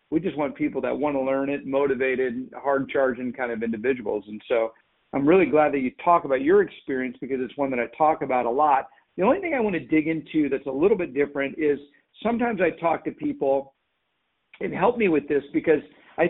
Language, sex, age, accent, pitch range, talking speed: English, male, 50-69, American, 140-170 Hz, 220 wpm